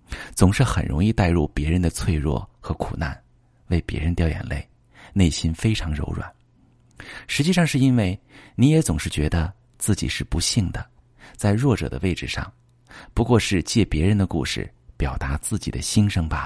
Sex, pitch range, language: male, 85-120 Hz, Chinese